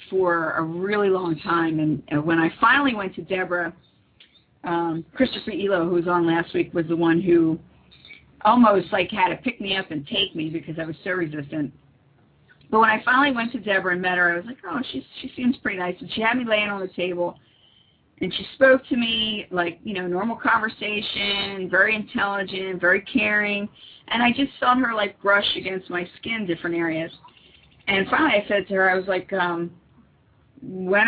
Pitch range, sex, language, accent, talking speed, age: 170-210 Hz, female, English, American, 200 wpm, 50-69